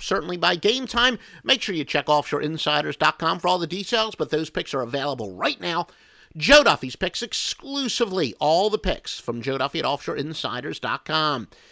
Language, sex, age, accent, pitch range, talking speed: English, male, 50-69, American, 135-195 Hz, 165 wpm